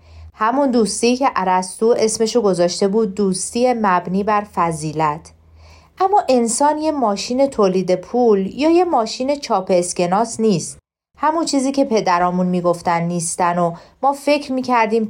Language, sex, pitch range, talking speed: Persian, female, 185-270 Hz, 130 wpm